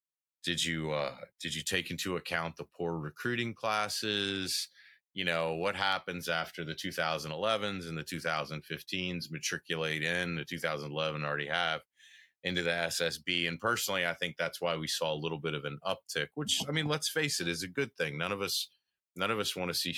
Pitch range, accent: 80-100 Hz, American